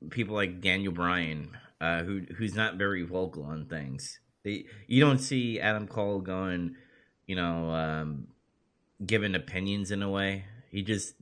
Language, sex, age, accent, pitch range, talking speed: English, male, 30-49, American, 85-105 Hz, 155 wpm